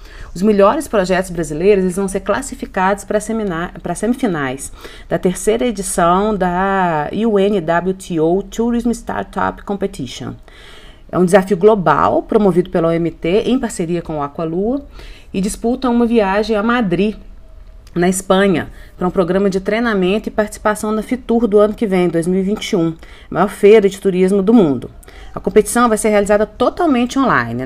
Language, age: Portuguese, 30-49